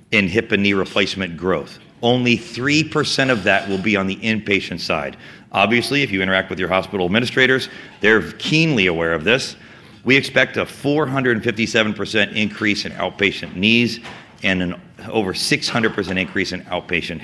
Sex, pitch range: male, 95-115 Hz